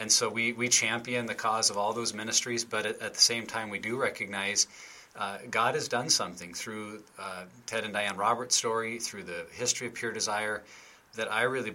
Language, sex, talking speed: English, male, 210 wpm